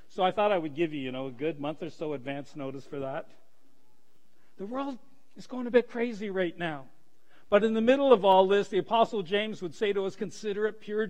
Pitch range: 160-220 Hz